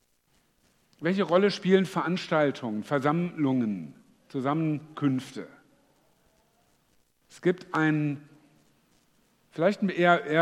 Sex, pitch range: male, 140-175 Hz